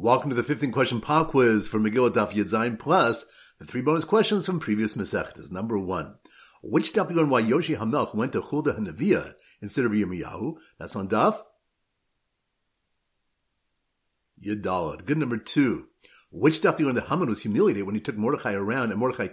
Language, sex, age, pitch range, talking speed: English, male, 50-69, 95-145 Hz, 170 wpm